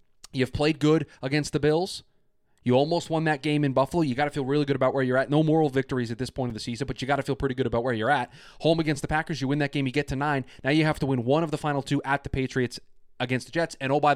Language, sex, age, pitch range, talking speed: English, male, 20-39, 125-150 Hz, 315 wpm